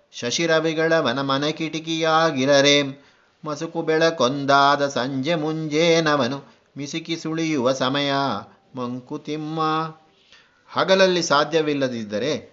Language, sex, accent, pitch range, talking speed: Kannada, male, native, 140-165 Hz, 60 wpm